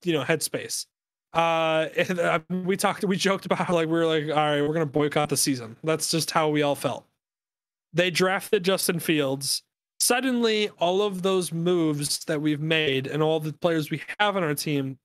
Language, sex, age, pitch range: English, male, 20-39, 145-175 Hz